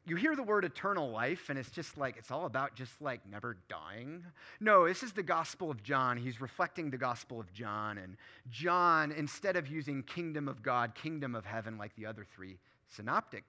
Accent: American